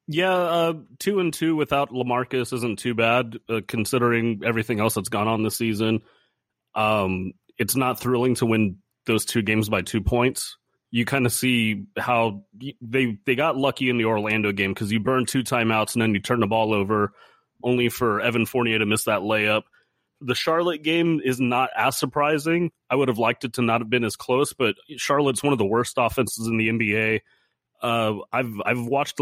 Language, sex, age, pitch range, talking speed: English, male, 30-49, 110-130 Hz, 195 wpm